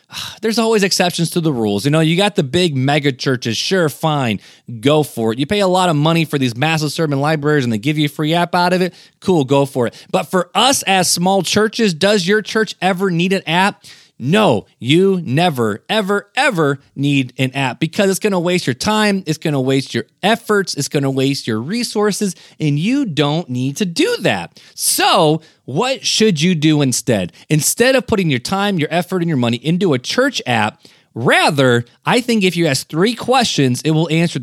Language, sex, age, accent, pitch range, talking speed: English, male, 20-39, American, 140-205 Hz, 215 wpm